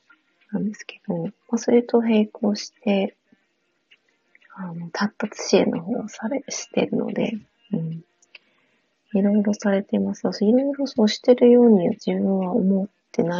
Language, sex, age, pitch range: Japanese, female, 30-49, 200-235 Hz